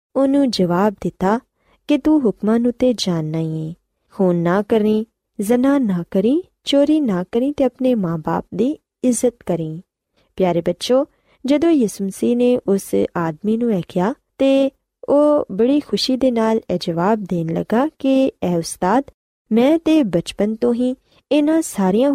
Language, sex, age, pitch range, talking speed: Punjabi, female, 20-39, 180-255 Hz, 150 wpm